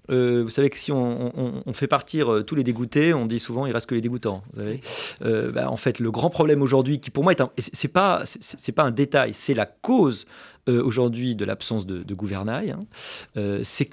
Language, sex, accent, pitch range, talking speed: French, male, French, 115-150 Hz, 250 wpm